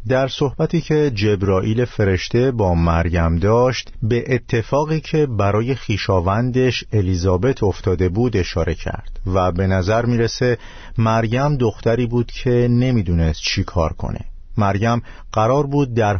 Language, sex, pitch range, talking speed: Persian, male, 95-120 Hz, 125 wpm